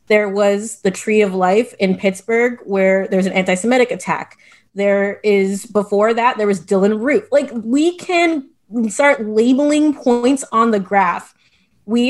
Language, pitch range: English, 195-245 Hz